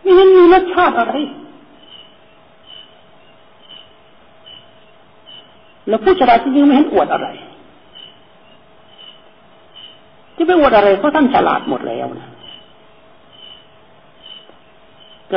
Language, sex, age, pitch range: Thai, male, 60-79, 215-300 Hz